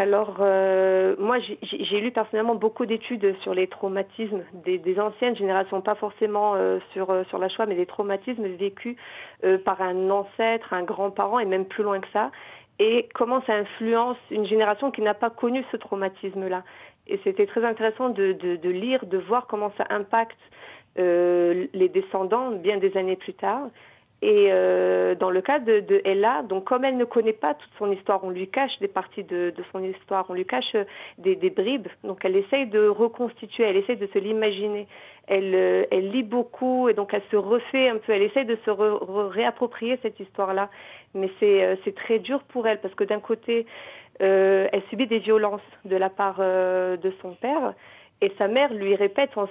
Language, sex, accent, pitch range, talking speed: French, female, French, 190-230 Hz, 200 wpm